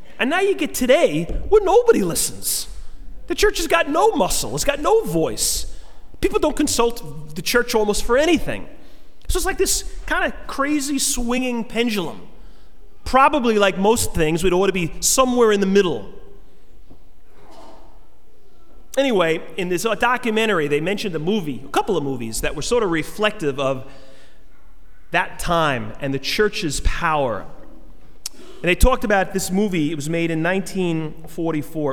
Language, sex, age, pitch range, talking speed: English, male, 30-49, 140-225 Hz, 155 wpm